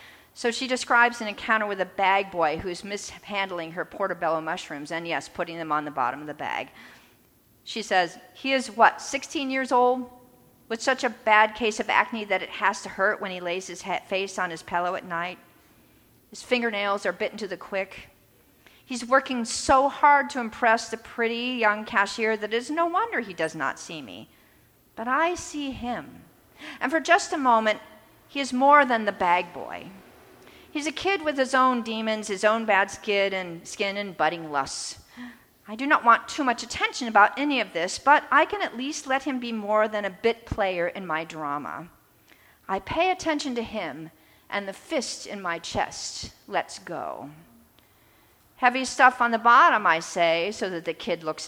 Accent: American